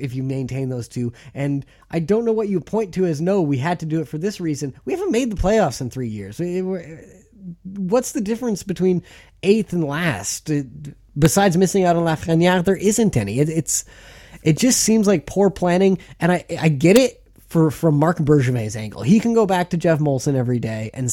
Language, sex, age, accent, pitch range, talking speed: English, male, 30-49, American, 120-170 Hz, 220 wpm